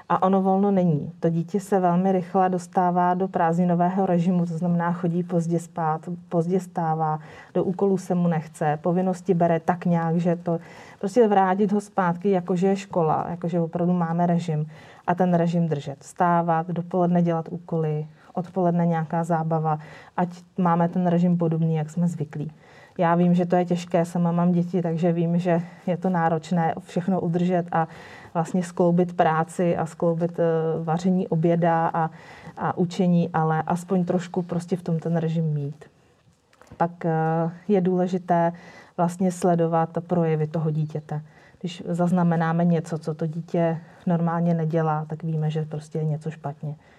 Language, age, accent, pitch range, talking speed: Czech, 30-49, native, 165-180 Hz, 155 wpm